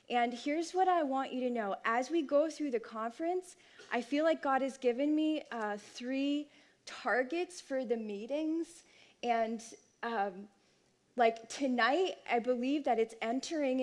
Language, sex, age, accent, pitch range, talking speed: English, female, 20-39, American, 225-275 Hz, 155 wpm